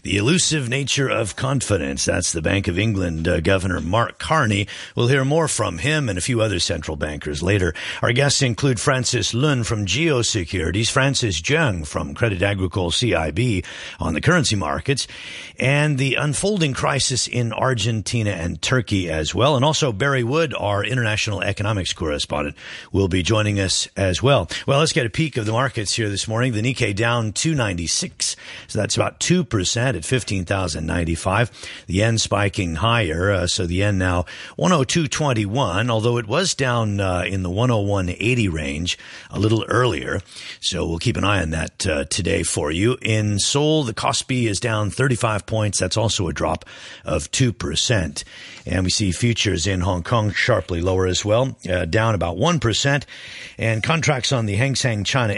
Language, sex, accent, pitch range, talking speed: English, male, American, 95-130 Hz, 170 wpm